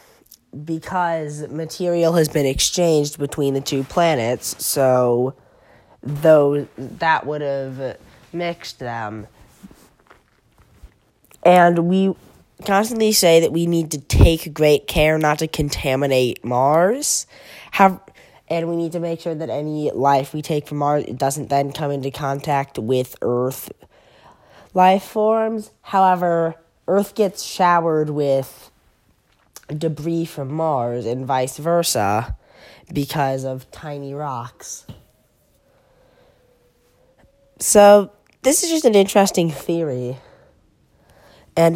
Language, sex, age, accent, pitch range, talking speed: English, female, 10-29, American, 135-170 Hz, 110 wpm